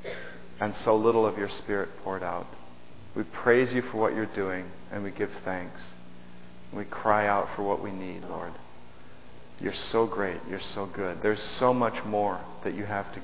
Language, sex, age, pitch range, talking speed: English, male, 40-59, 90-115 Hz, 185 wpm